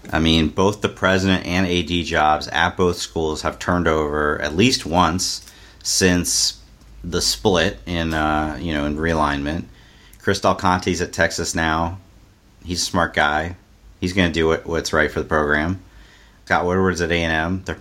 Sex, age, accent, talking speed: male, 40-59, American, 175 wpm